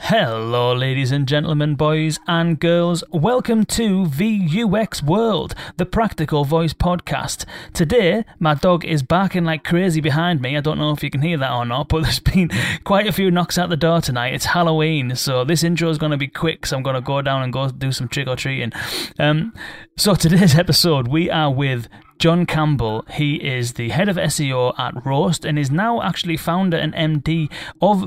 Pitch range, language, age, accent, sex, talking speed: 130-170 Hz, English, 30-49, British, male, 195 wpm